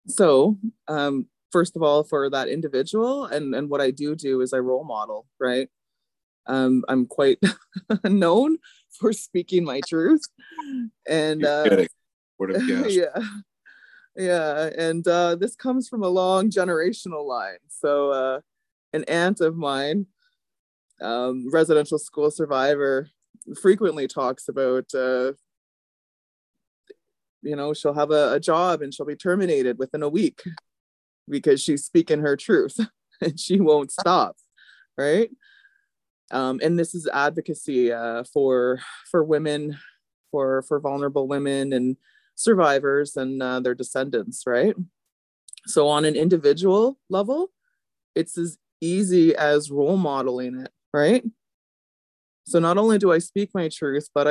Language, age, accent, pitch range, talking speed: English, 20-39, American, 140-195 Hz, 130 wpm